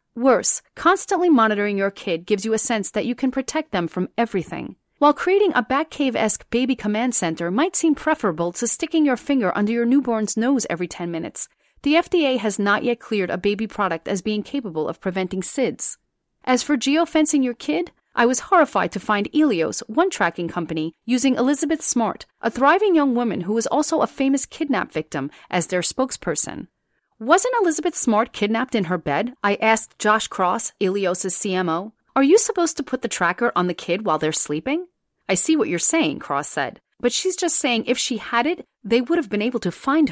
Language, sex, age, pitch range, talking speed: English, female, 40-59, 190-285 Hz, 195 wpm